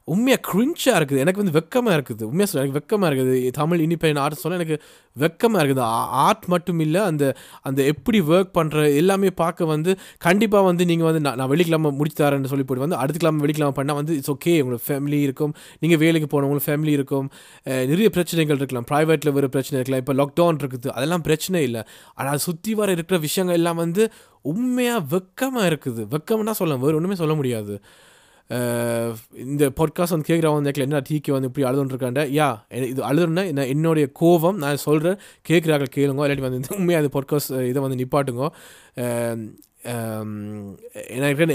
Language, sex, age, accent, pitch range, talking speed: Tamil, male, 20-39, native, 135-170 Hz, 165 wpm